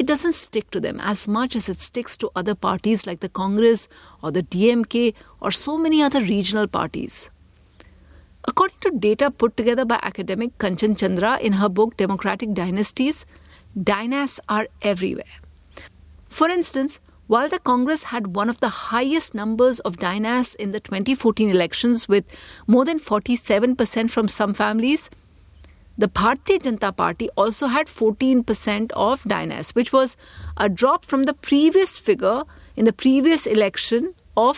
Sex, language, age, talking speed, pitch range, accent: female, English, 50-69, 155 wpm, 205-270 Hz, Indian